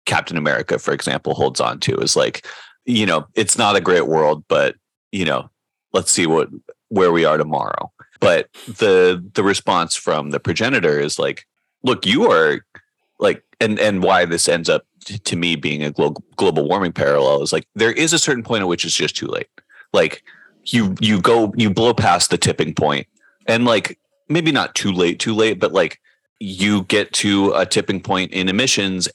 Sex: male